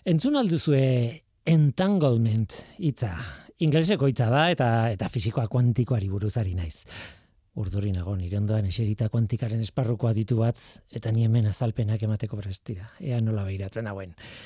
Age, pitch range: 40-59, 110-160 Hz